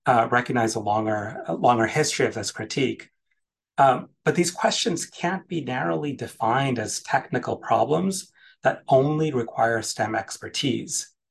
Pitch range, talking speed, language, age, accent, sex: 115-155 Hz, 140 wpm, English, 30-49, American, male